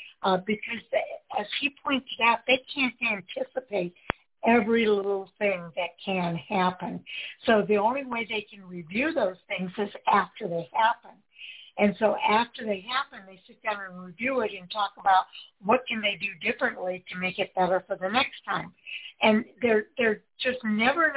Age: 60-79